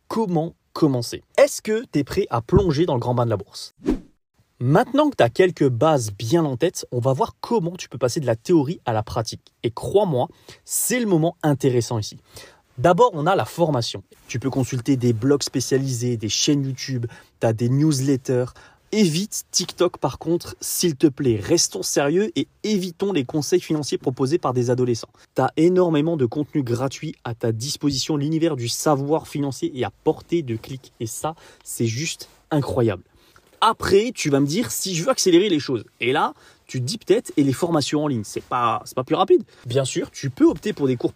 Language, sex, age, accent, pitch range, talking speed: French, male, 20-39, French, 125-170 Hz, 205 wpm